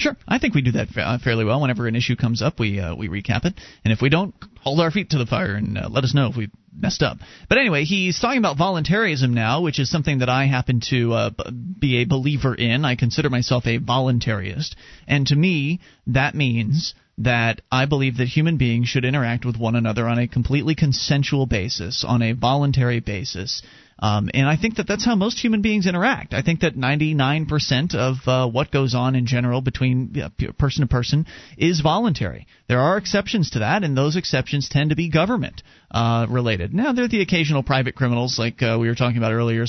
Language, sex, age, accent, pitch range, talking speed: English, male, 30-49, American, 120-150 Hz, 215 wpm